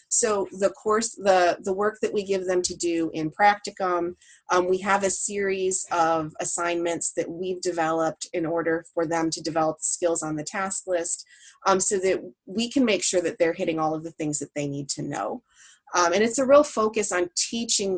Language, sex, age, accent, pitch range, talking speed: English, female, 30-49, American, 165-195 Hz, 210 wpm